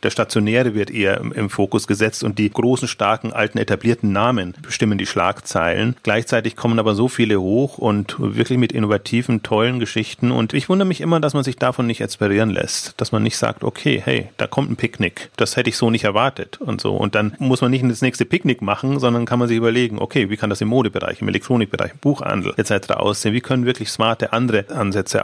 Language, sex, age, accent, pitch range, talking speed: German, male, 40-59, German, 110-135 Hz, 215 wpm